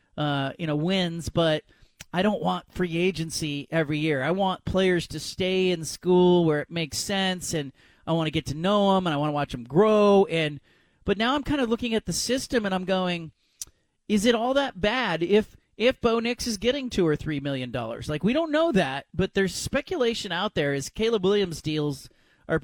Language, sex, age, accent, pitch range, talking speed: English, male, 40-59, American, 155-205 Hz, 215 wpm